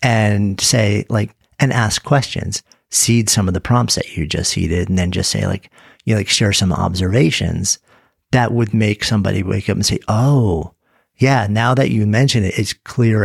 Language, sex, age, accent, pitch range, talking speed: English, male, 50-69, American, 95-120 Hz, 195 wpm